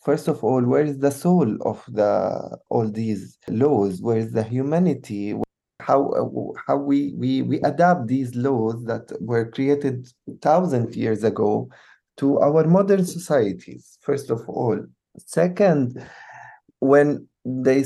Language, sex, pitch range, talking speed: English, male, 110-140 Hz, 135 wpm